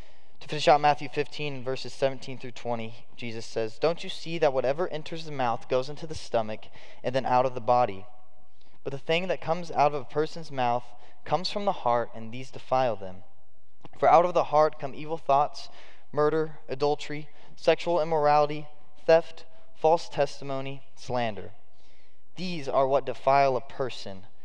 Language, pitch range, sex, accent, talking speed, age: English, 110-150 Hz, male, American, 170 wpm, 10-29